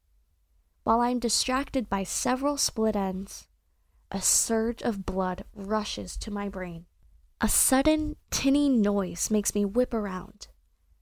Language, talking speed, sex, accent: English, 125 wpm, female, American